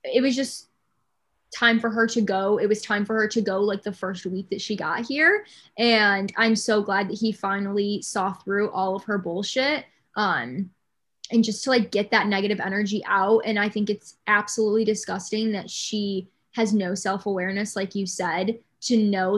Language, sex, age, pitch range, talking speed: English, female, 20-39, 200-225 Hz, 190 wpm